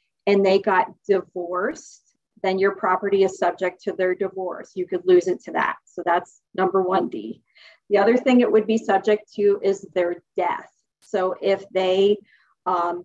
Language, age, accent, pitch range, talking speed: English, 40-59, American, 185-210 Hz, 175 wpm